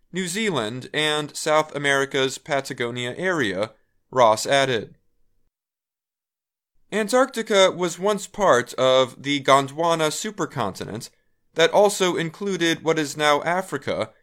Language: Chinese